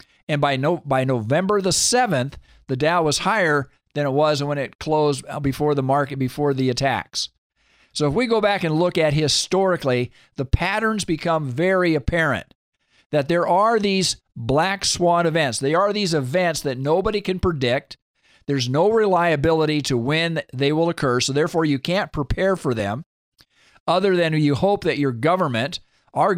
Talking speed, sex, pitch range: 170 wpm, male, 135-175 Hz